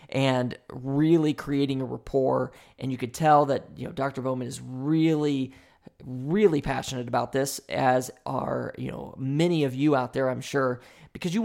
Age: 20-39